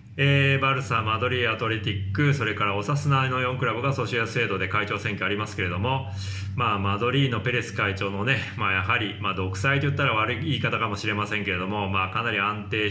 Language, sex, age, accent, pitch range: Japanese, male, 20-39, native, 100-130 Hz